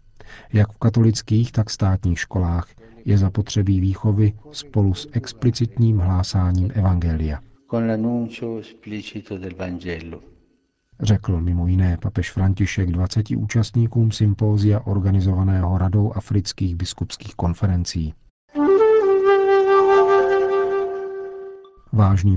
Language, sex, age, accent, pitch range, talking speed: Czech, male, 50-69, native, 95-115 Hz, 75 wpm